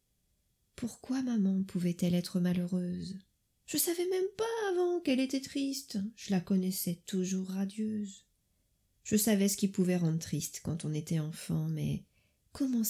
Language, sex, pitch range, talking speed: French, female, 160-220 Hz, 145 wpm